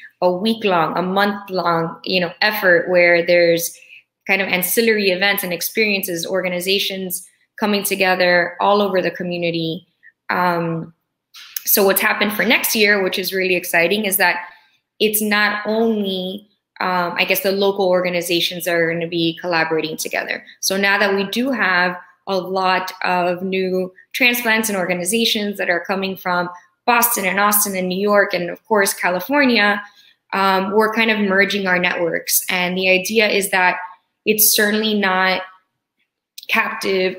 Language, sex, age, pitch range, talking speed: English, female, 20-39, 180-205 Hz, 155 wpm